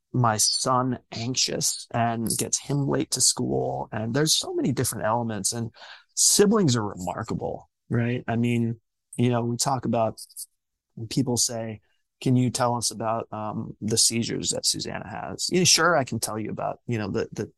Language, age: English, 20-39